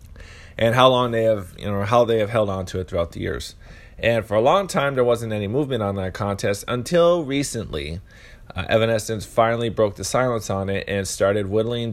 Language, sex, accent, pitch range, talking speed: English, male, American, 95-115 Hz, 210 wpm